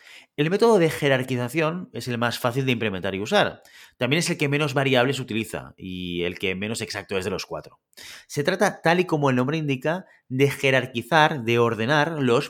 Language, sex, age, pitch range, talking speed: Spanish, male, 30-49, 115-160 Hz, 195 wpm